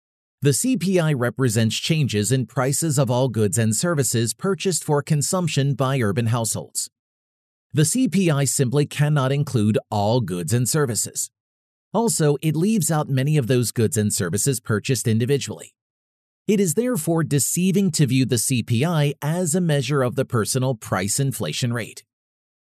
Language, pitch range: English, 115-155 Hz